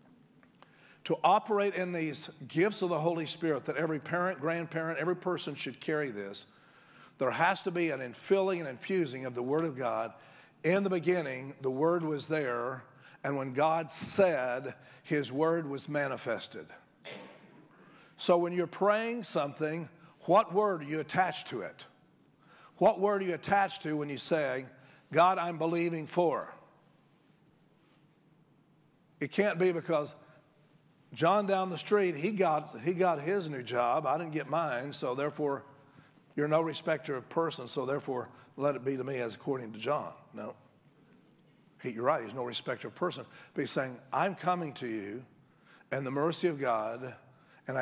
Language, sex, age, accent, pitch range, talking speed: English, male, 50-69, American, 140-175 Hz, 165 wpm